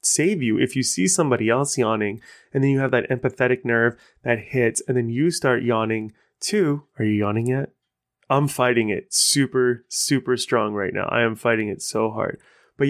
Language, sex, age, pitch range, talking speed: English, male, 20-39, 115-135 Hz, 195 wpm